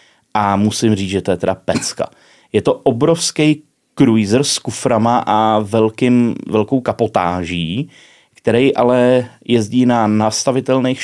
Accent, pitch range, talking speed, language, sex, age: native, 110-135 Hz, 125 wpm, Czech, male, 30-49